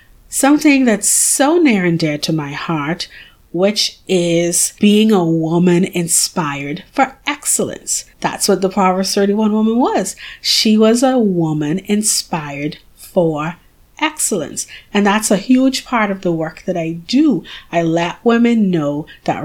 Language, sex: English, female